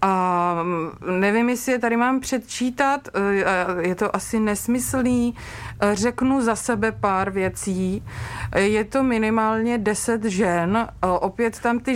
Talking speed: 120 wpm